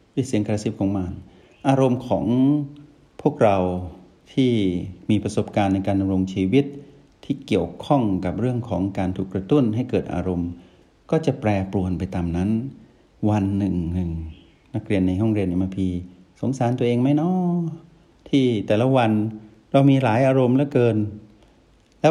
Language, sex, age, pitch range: Thai, male, 60-79, 95-135 Hz